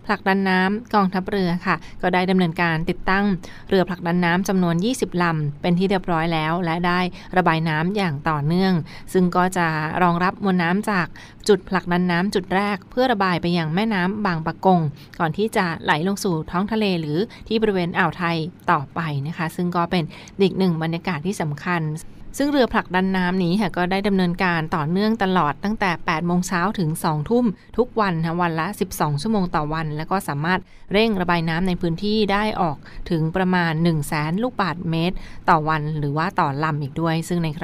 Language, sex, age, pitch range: Thai, female, 20-39, 165-195 Hz